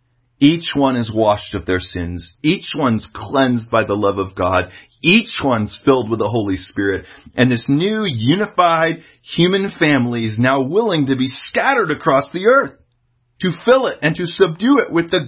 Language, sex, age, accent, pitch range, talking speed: English, male, 40-59, American, 115-160 Hz, 180 wpm